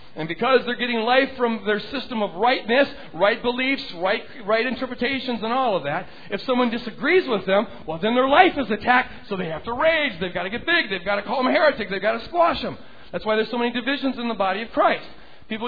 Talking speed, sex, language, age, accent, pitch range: 240 wpm, male, English, 40-59, American, 205-255 Hz